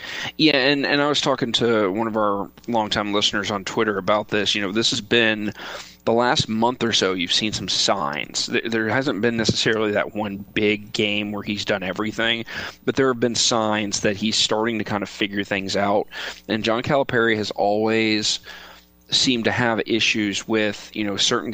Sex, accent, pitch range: male, American, 105-120 Hz